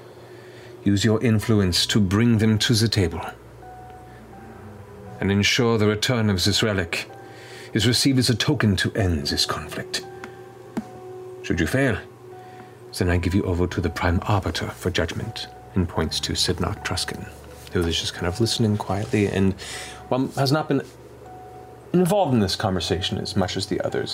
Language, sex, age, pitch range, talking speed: English, male, 40-59, 90-115 Hz, 160 wpm